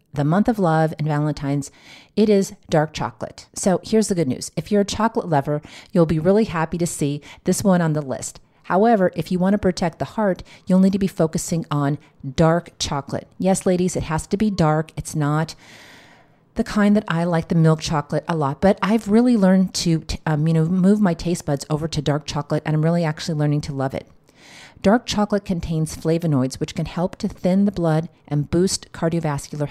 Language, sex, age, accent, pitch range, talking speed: English, female, 40-59, American, 150-185 Hz, 210 wpm